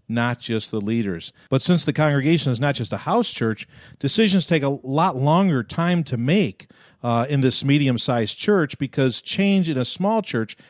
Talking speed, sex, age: 185 wpm, male, 50-69